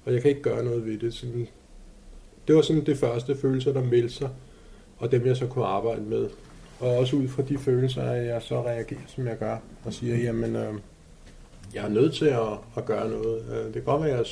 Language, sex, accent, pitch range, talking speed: Danish, male, native, 110-130 Hz, 235 wpm